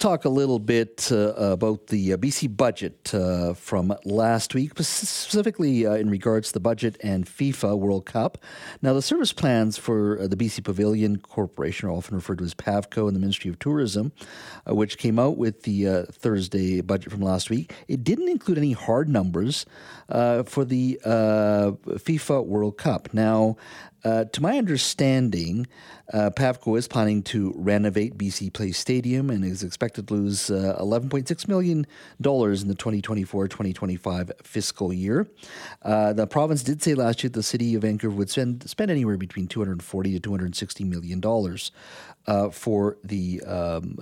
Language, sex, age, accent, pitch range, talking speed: English, male, 50-69, American, 100-125 Hz, 165 wpm